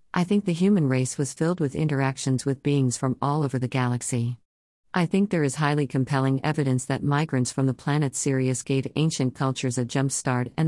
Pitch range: 130-155 Hz